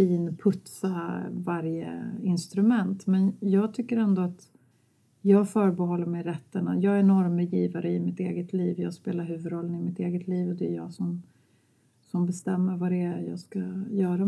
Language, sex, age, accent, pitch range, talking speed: English, female, 40-59, Swedish, 170-195 Hz, 165 wpm